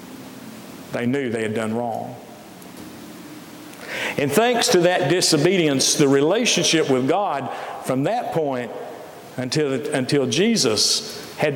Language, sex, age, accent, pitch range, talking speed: English, male, 50-69, American, 135-175 Hz, 115 wpm